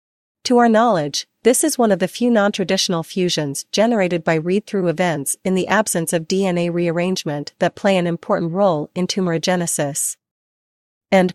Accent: American